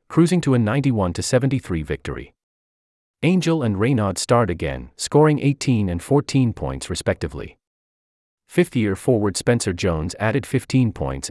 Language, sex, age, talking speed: English, male, 30-49, 120 wpm